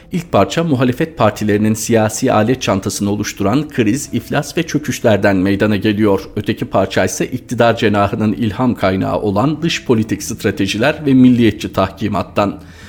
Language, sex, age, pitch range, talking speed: Turkish, male, 50-69, 100-130 Hz, 130 wpm